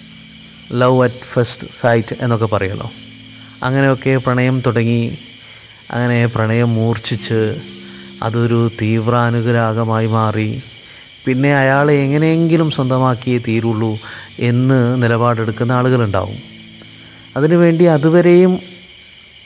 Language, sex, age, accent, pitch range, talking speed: Malayalam, male, 30-49, native, 115-145 Hz, 75 wpm